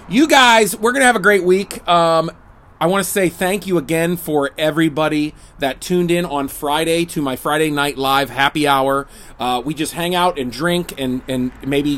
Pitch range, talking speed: 135-180 Hz, 200 wpm